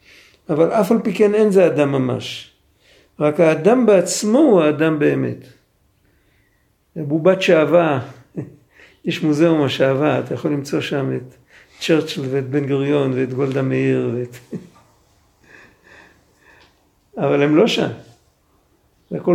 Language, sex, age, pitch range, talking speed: Hebrew, male, 50-69, 145-195 Hz, 120 wpm